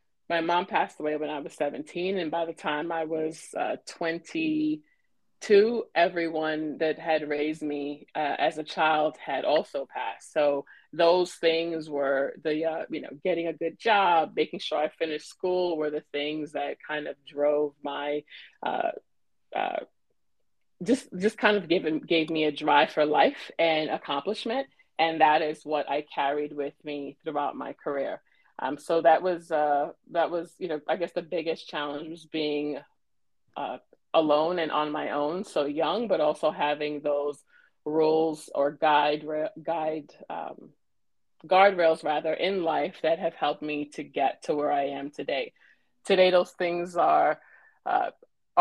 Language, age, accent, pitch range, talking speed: English, 30-49, American, 150-175 Hz, 165 wpm